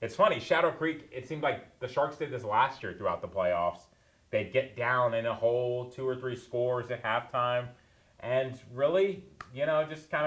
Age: 30-49